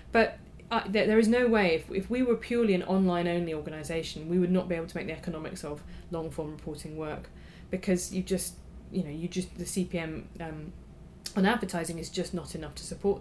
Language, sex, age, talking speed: English, female, 20-39, 205 wpm